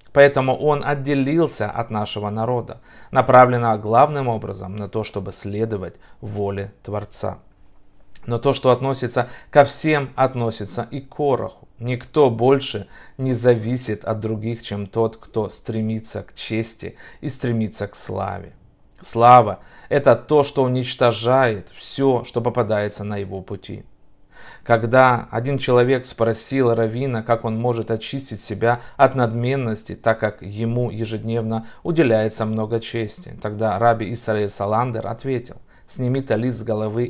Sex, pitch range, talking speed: male, 110-130 Hz, 130 wpm